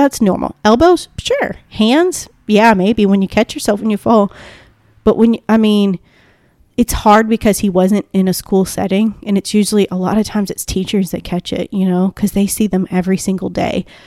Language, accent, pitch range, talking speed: English, American, 195-225 Hz, 210 wpm